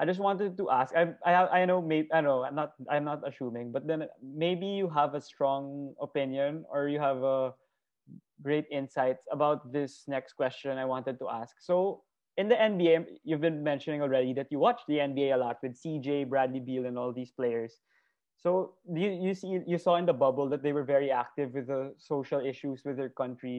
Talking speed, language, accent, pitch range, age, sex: 210 wpm, Filipino, native, 135-160 Hz, 20-39, male